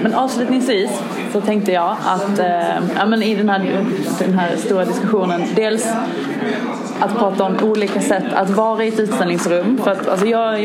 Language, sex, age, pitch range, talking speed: English, female, 20-39, 190-230 Hz, 175 wpm